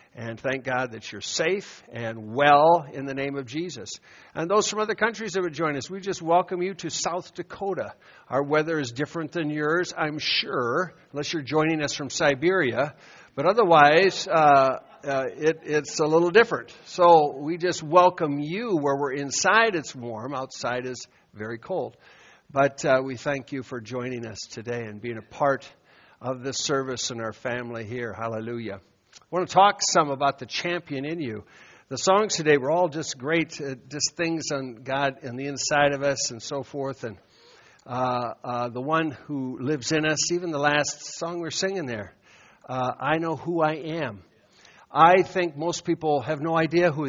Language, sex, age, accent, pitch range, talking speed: English, male, 60-79, American, 130-165 Hz, 185 wpm